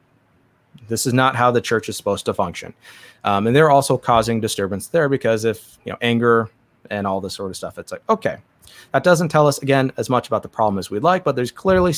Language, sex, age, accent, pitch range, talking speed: English, male, 30-49, American, 110-135 Hz, 235 wpm